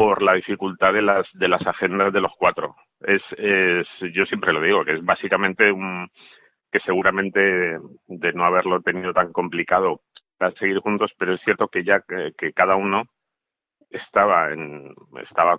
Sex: male